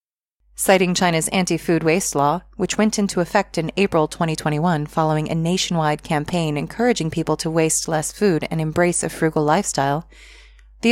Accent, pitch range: American, 160-195 Hz